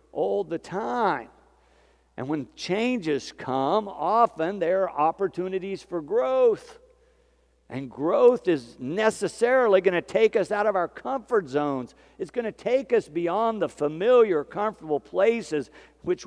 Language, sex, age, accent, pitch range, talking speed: English, male, 50-69, American, 135-210 Hz, 135 wpm